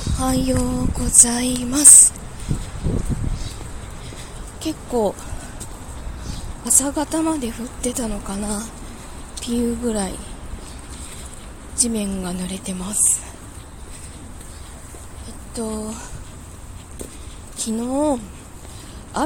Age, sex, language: 20-39, female, Japanese